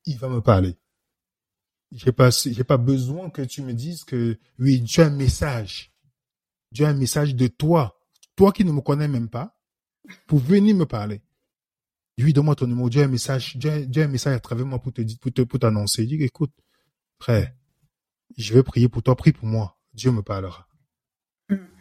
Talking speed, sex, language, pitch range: 200 wpm, male, French, 115-155 Hz